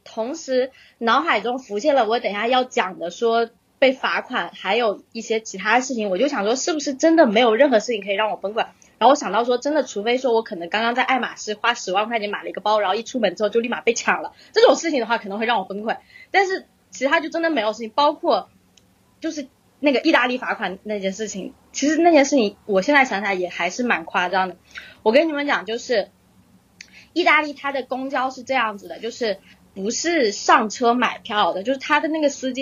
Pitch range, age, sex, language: 210-270 Hz, 20-39, female, Chinese